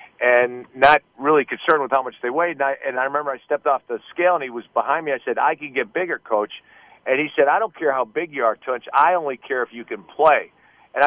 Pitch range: 130-170 Hz